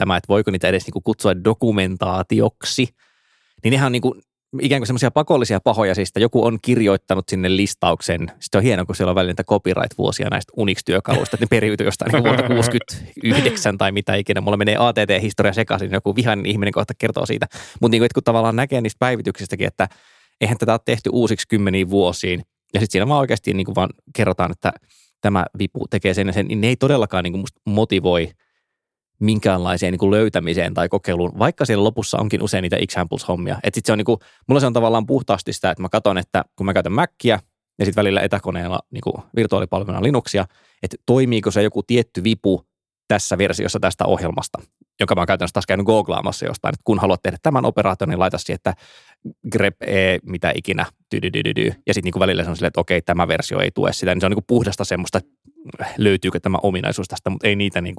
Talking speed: 185 wpm